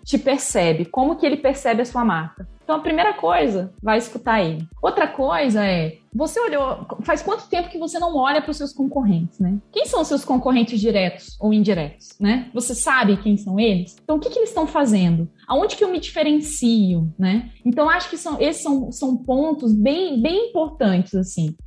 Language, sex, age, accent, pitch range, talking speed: Portuguese, female, 20-39, Brazilian, 210-300 Hz, 195 wpm